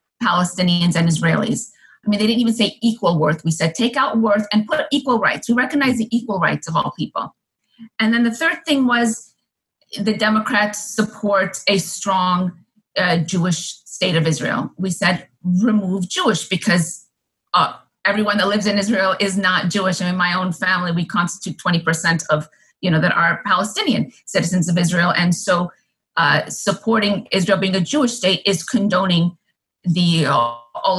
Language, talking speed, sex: English, 170 wpm, female